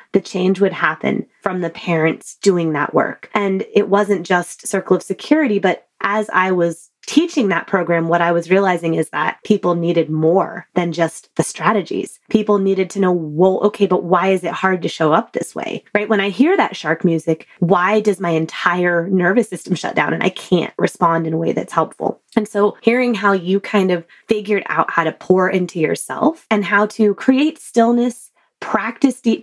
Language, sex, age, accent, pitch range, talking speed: English, female, 20-39, American, 175-210 Hz, 200 wpm